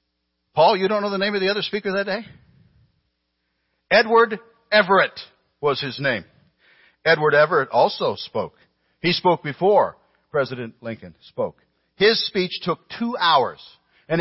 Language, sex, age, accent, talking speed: English, male, 60-79, American, 140 wpm